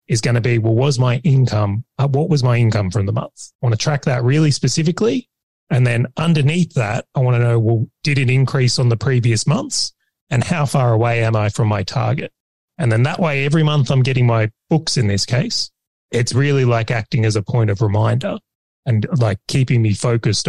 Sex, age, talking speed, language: male, 30-49, 220 wpm, English